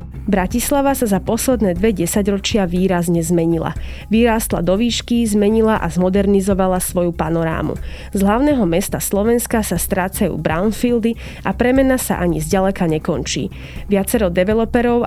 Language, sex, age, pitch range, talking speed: Slovak, female, 20-39, 180-230 Hz, 125 wpm